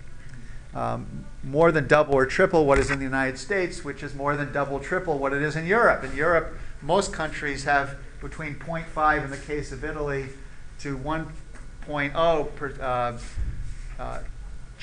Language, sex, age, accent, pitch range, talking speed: English, male, 50-69, American, 130-160 Hz, 155 wpm